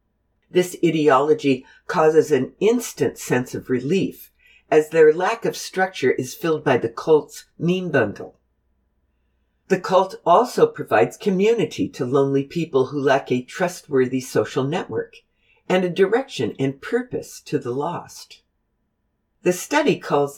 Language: English